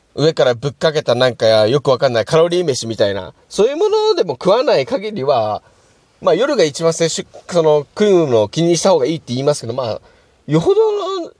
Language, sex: Japanese, male